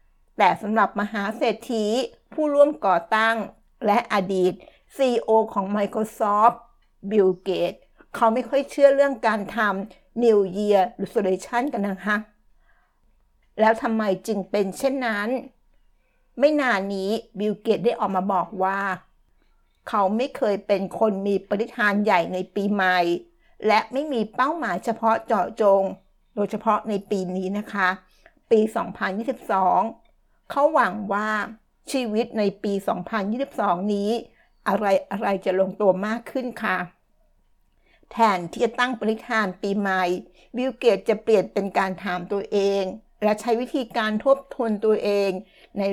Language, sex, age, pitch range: Thai, female, 60-79, 195-235 Hz